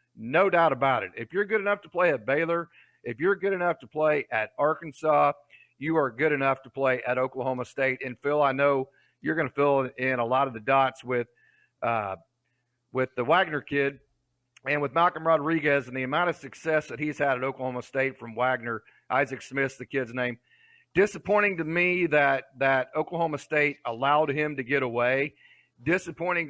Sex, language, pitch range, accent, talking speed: male, English, 130-160 Hz, American, 190 wpm